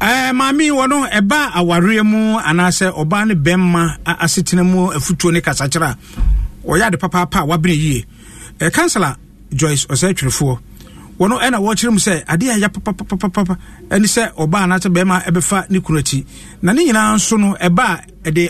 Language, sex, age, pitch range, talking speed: English, male, 50-69, 160-215 Hz, 150 wpm